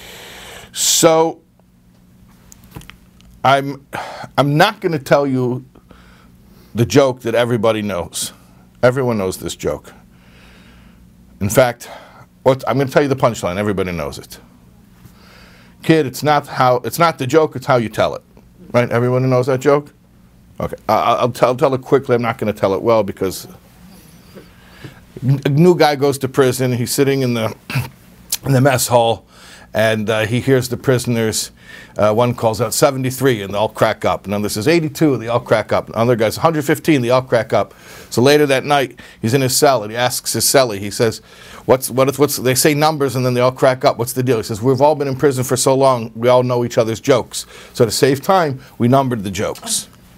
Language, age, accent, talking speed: English, 50-69, American, 195 wpm